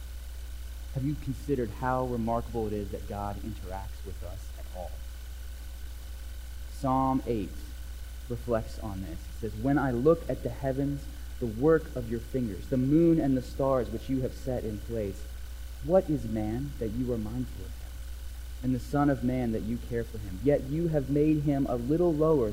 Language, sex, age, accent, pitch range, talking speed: English, male, 20-39, American, 80-130 Hz, 185 wpm